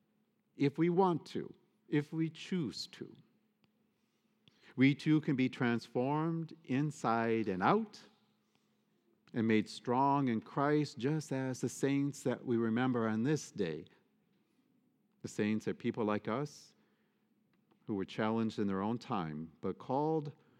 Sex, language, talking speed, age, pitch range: male, English, 135 wpm, 50-69, 110-160 Hz